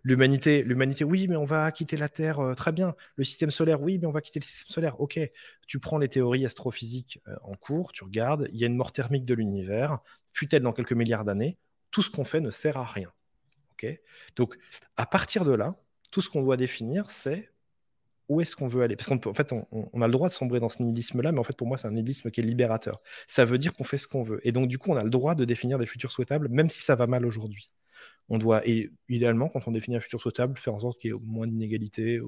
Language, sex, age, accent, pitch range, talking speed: French, male, 30-49, French, 115-150 Hz, 265 wpm